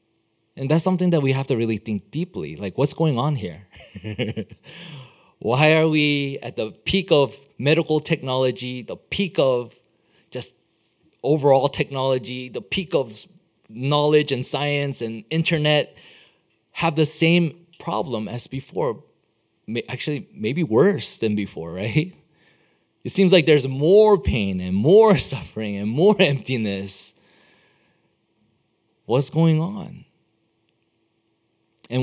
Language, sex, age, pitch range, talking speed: English, male, 30-49, 110-165 Hz, 125 wpm